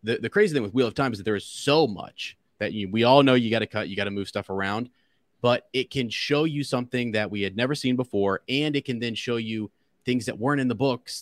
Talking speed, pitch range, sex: 285 wpm, 105-125 Hz, male